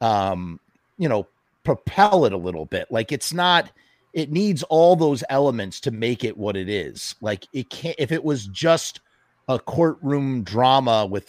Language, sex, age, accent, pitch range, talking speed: English, male, 30-49, American, 110-145 Hz, 175 wpm